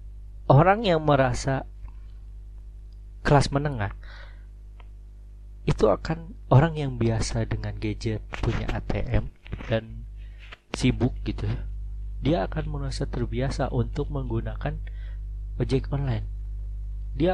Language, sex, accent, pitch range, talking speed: Indonesian, male, native, 100-125 Hz, 95 wpm